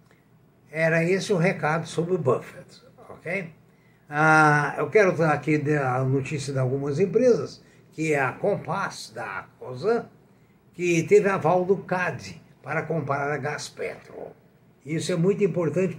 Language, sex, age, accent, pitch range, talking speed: Portuguese, male, 60-79, Brazilian, 155-195 Hz, 145 wpm